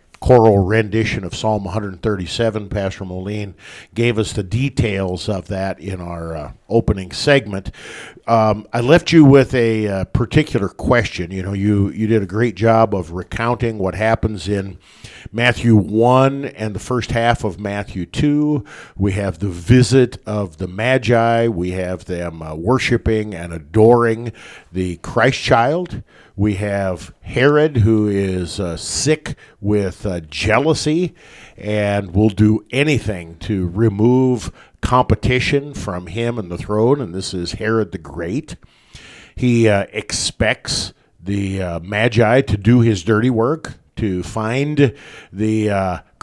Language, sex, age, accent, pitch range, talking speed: English, male, 50-69, American, 95-120 Hz, 140 wpm